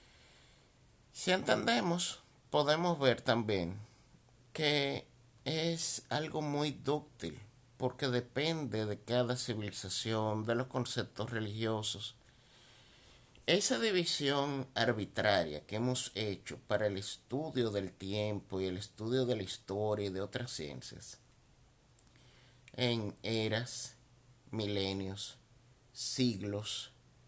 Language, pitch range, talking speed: Spanish, 115-140 Hz, 95 wpm